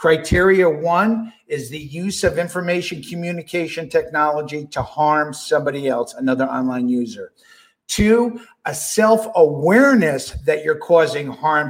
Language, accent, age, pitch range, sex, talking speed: English, American, 50-69, 160-225 Hz, male, 120 wpm